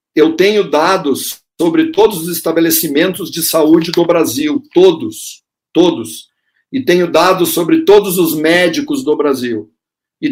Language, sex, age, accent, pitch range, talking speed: Portuguese, male, 50-69, Brazilian, 155-200 Hz, 135 wpm